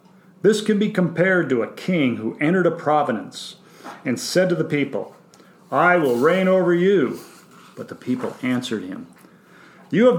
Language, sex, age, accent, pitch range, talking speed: English, male, 50-69, American, 135-180 Hz, 165 wpm